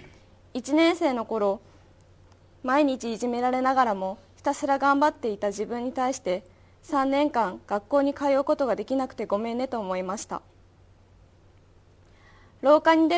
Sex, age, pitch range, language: female, 20-39, 180-275 Hz, Japanese